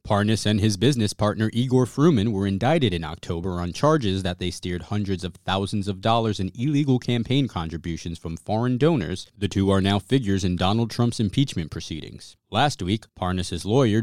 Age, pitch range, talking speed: 30-49, 95-120 Hz, 180 wpm